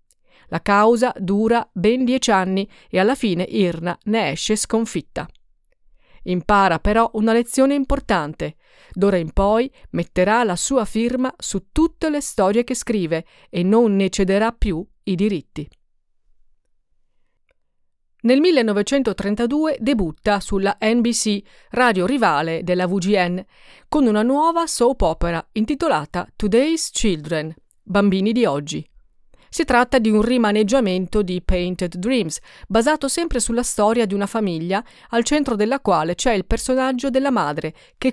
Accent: native